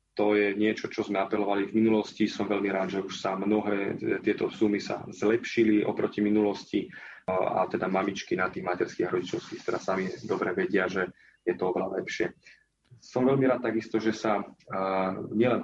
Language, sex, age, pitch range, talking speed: Slovak, male, 30-49, 100-110 Hz, 175 wpm